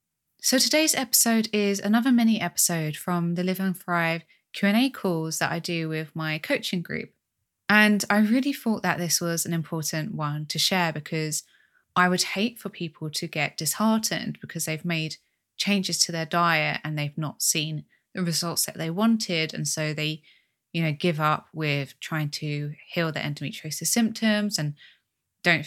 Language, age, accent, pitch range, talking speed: English, 20-39, British, 155-200 Hz, 175 wpm